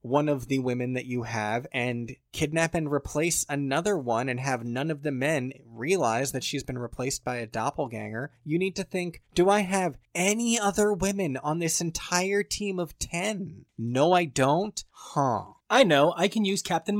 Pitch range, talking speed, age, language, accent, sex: 125-160 Hz, 185 wpm, 20-39, English, American, male